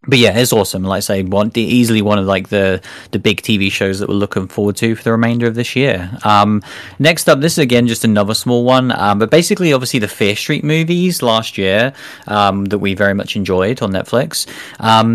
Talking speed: 230 wpm